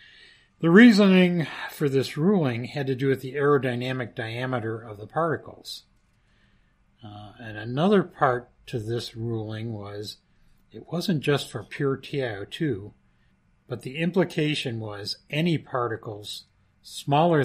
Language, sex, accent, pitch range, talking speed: English, male, American, 110-145 Hz, 125 wpm